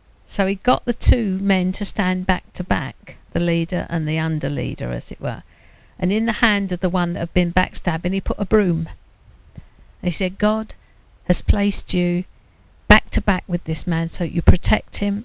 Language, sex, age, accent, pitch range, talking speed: English, female, 50-69, British, 170-200 Hz, 205 wpm